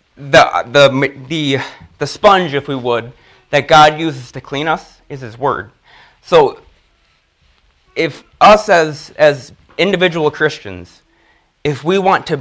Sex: male